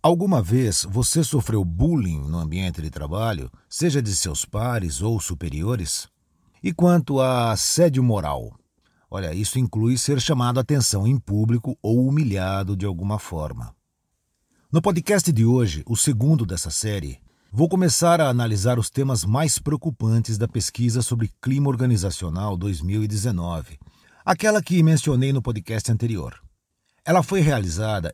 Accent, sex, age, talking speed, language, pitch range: Brazilian, male, 50-69, 140 wpm, Portuguese, 105-145 Hz